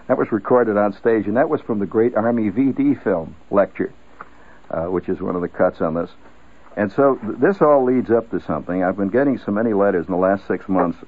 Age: 60-79